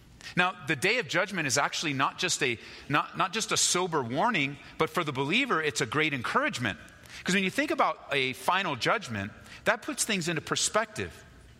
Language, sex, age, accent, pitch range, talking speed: English, male, 40-59, American, 95-135 Hz, 190 wpm